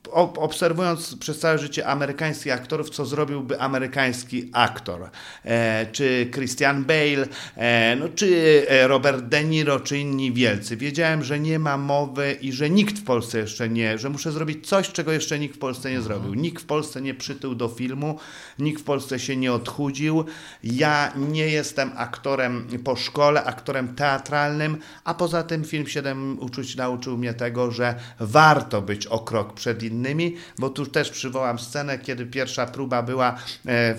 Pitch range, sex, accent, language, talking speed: 120-145 Hz, male, Polish, English, 160 wpm